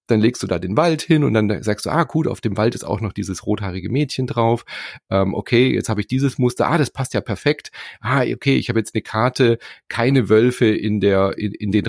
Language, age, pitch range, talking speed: German, 30-49, 100-125 Hz, 245 wpm